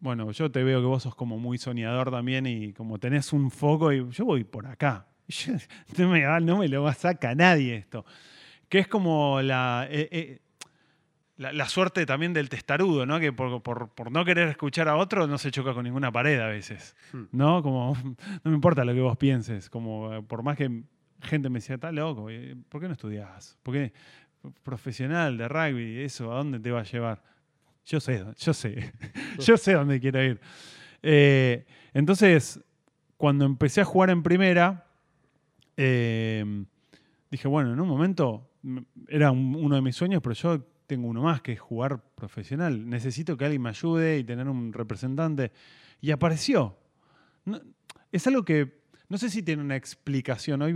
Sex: male